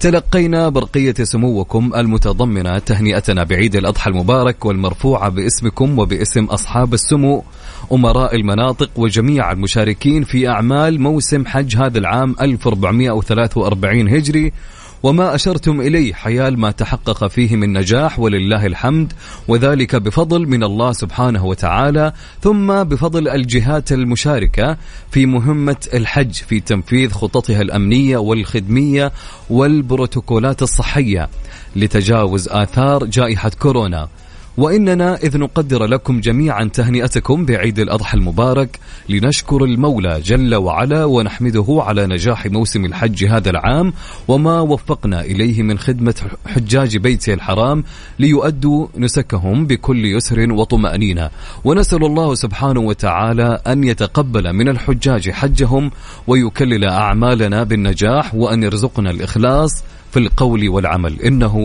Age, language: 30-49, Arabic